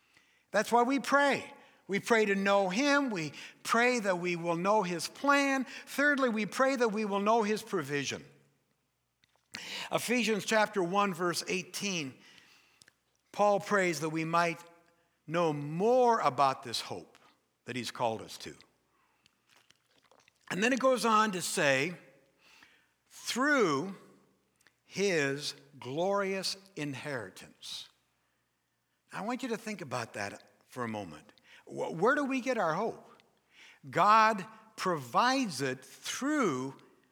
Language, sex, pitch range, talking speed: English, male, 150-220 Hz, 125 wpm